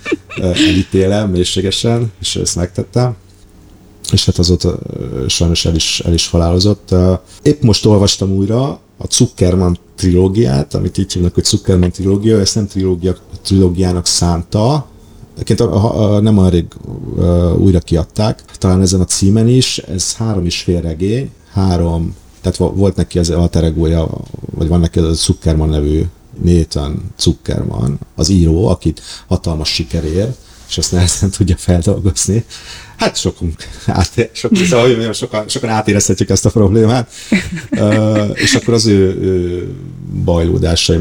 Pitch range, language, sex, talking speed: 85-105 Hz, Hungarian, male, 130 wpm